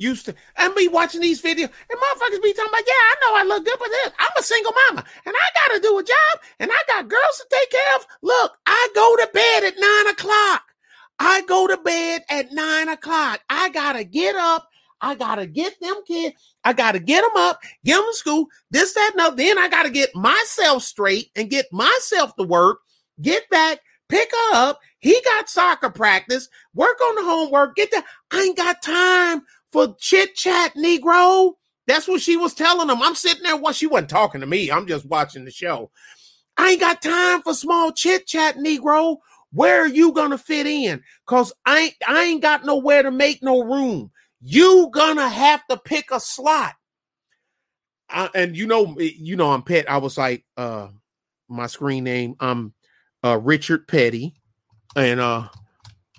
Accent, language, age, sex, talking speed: American, English, 30-49, male, 195 wpm